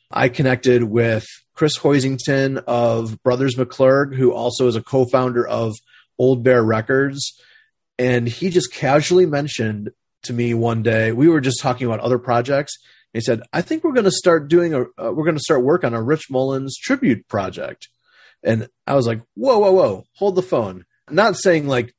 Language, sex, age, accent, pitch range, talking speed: English, male, 30-49, American, 120-145 Hz, 185 wpm